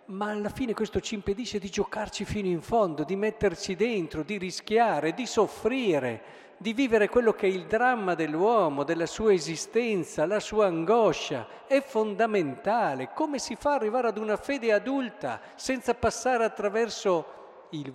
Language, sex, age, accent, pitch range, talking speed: Italian, male, 50-69, native, 125-210 Hz, 155 wpm